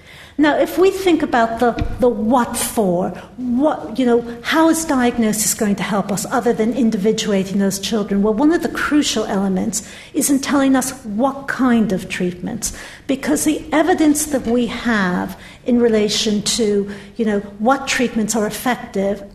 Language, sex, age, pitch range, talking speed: English, female, 50-69, 200-245 Hz, 165 wpm